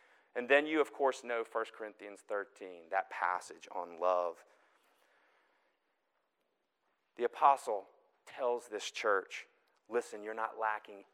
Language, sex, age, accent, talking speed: English, male, 40-59, American, 120 wpm